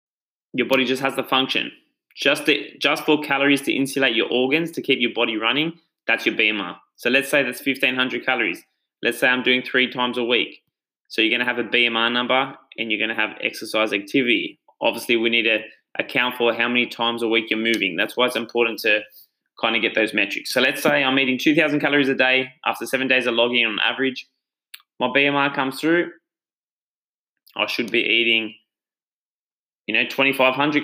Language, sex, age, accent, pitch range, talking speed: English, male, 20-39, Australian, 115-135 Hz, 200 wpm